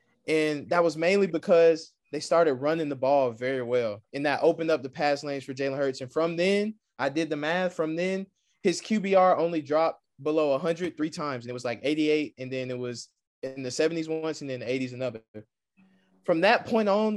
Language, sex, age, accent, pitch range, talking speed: English, male, 20-39, American, 145-180 Hz, 215 wpm